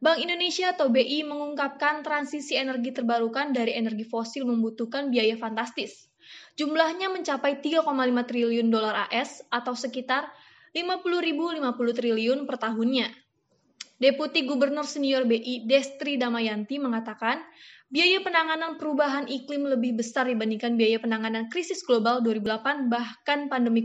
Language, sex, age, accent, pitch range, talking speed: Indonesian, female, 20-39, native, 235-285 Hz, 120 wpm